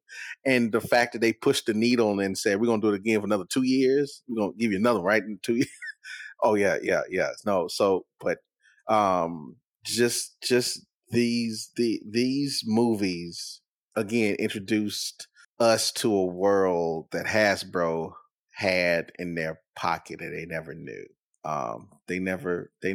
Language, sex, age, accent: English, male, 30-49, American